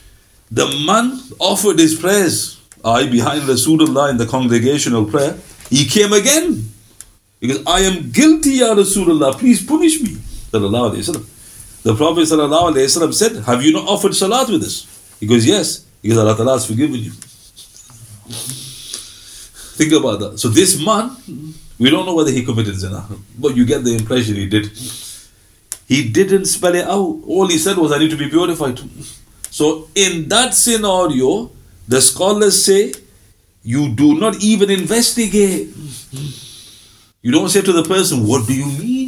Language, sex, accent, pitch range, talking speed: English, male, Indian, 110-180 Hz, 155 wpm